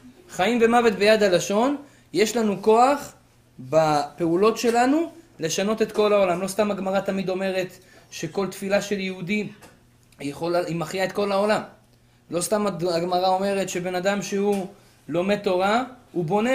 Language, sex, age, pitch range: Hebrew, male, 20-39, 145-205 Hz